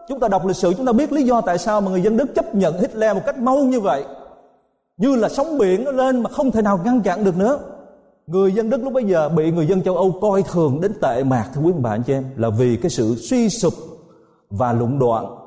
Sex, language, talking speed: male, Vietnamese, 270 wpm